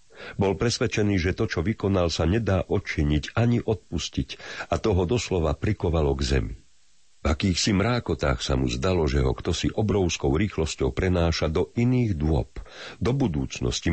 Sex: male